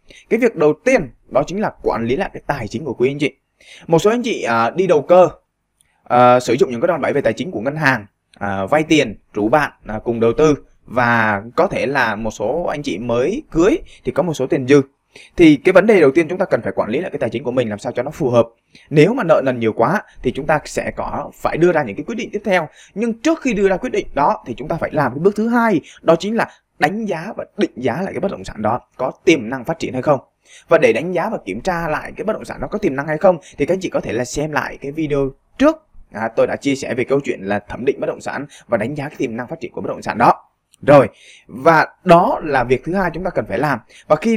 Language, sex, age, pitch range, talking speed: Vietnamese, male, 20-39, 130-205 Hz, 290 wpm